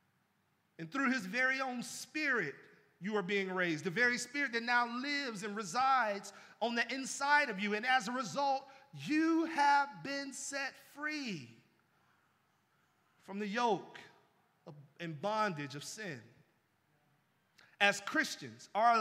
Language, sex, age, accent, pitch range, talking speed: English, male, 40-59, American, 195-260 Hz, 135 wpm